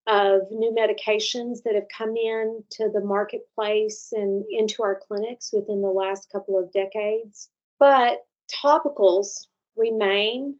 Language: English